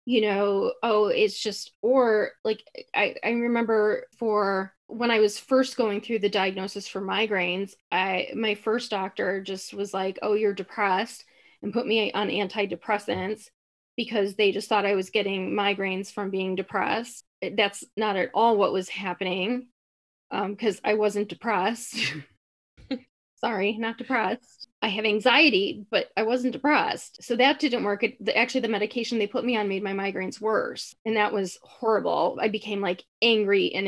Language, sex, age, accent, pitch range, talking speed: English, female, 20-39, American, 200-235 Hz, 165 wpm